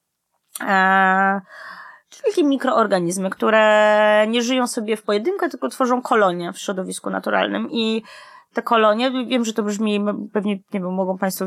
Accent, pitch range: native, 190-230 Hz